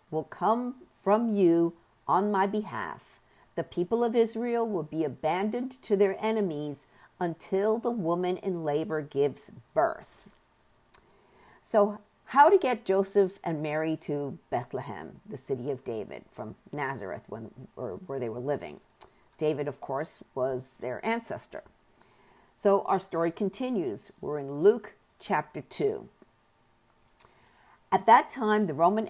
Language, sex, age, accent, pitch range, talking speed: English, female, 50-69, American, 160-210 Hz, 130 wpm